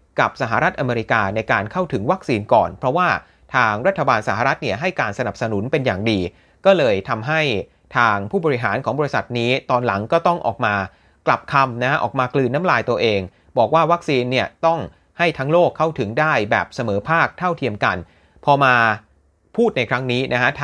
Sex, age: male, 30-49